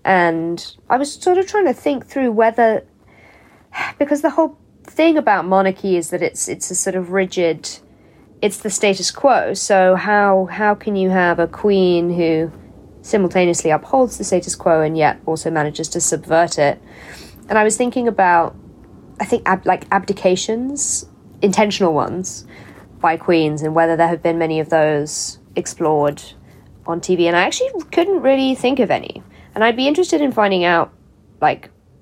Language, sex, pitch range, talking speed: English, female, 170-235 Hz, 170 wpm